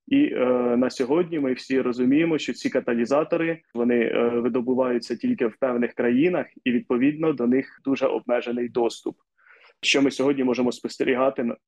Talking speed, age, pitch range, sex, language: 150 wpm, 20-39, 120-145 Hz, male, Ukrainian